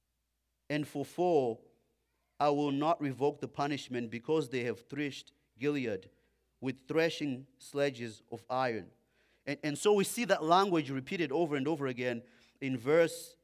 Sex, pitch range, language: male, 130-160 Hz, English